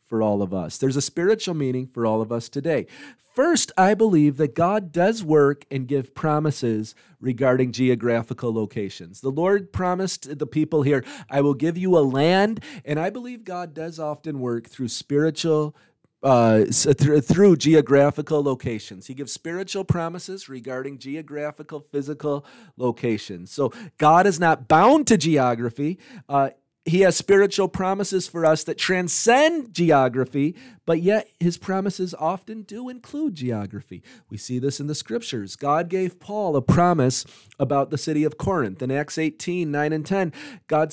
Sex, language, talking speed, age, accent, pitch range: male, English, 160 wpm, 40-59, American, 130-180 Hz